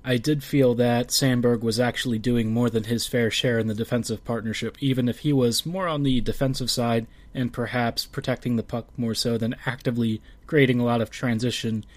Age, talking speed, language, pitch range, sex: 20-39, 200 wpm, English, 115-135 Hz, male